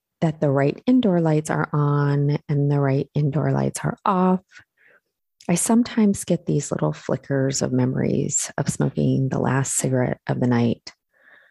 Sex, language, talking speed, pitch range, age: female, English, 155 wpm, 130-170 Hz, 30-49